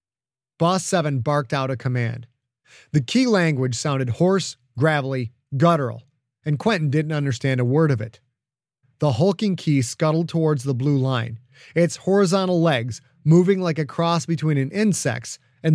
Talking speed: 150 wpm